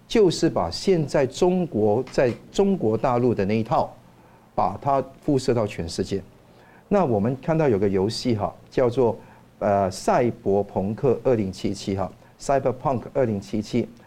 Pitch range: 105-145 Hz